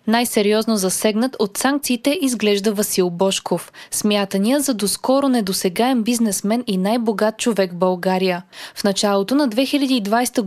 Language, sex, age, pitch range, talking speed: Bulgarian, female, 20-39, 205-260 Hz, 120 wpm